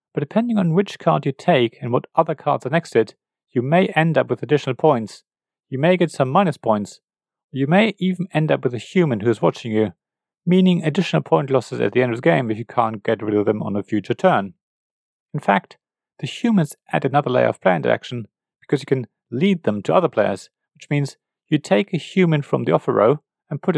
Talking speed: 230 wpm